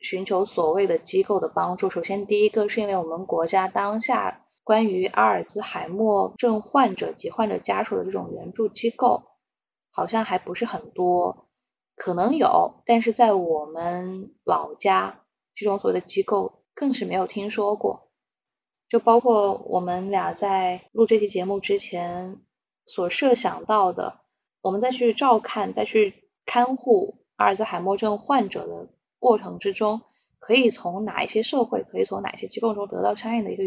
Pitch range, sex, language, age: 185-240 Hz, female, Chinese, 20-39